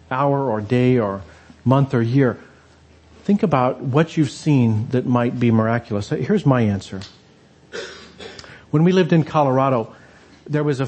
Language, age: English, 40-59